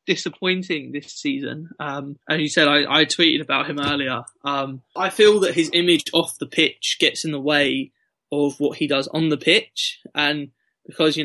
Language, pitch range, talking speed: English, 150-180 Hz, 190 wpm